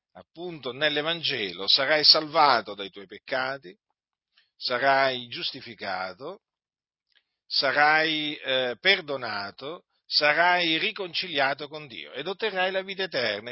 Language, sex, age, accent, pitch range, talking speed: Italian, male, 50-69, native, 130-165 Hz, 95 wpm